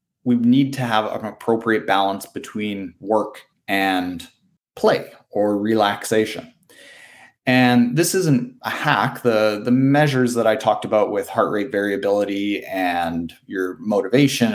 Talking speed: 130 wpm